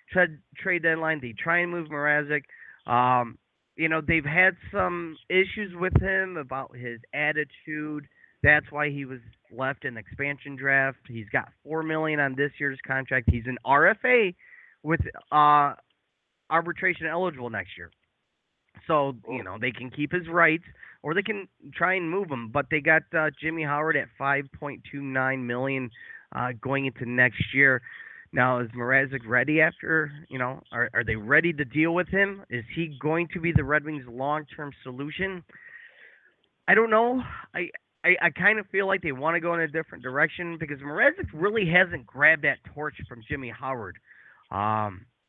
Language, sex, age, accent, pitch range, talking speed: English, male, 30-49, American, 130-170 Hz, 170 wpm